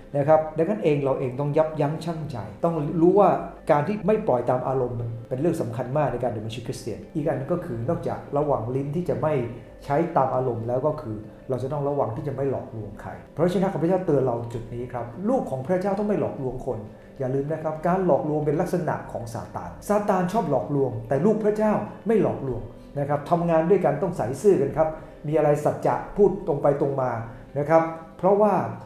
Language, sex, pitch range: English, male, 130-175 Hz